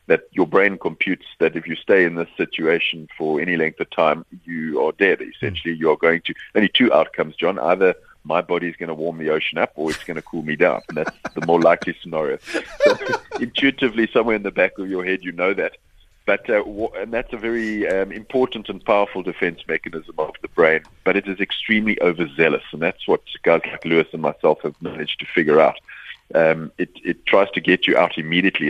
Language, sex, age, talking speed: English, male, 40-59, 220 wpm